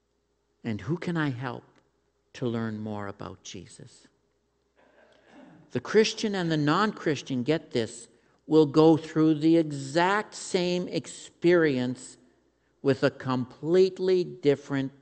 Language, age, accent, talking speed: English, 50-69, American, 110 wpm